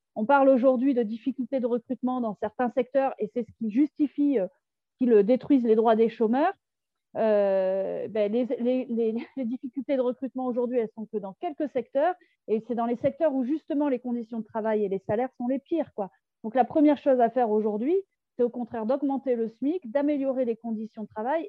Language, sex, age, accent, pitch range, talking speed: French, female, 40-59, French, 225-275 Hz, 200 wpm